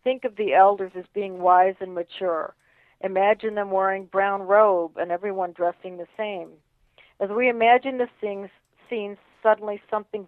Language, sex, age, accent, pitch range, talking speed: English, female, 50-69, American, 180-210 Hz, 150 wpm